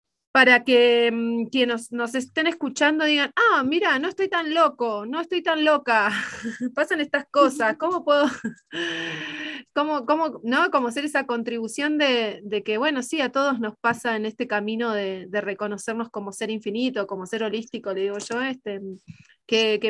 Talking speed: 170 wpm